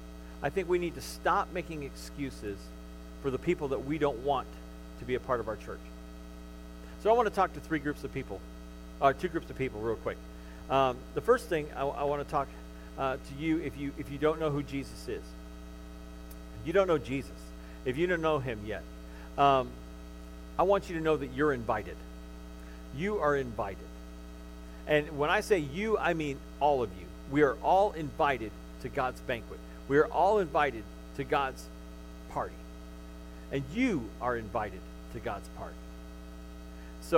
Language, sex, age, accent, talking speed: English, male, 40-59, American, 185 wpm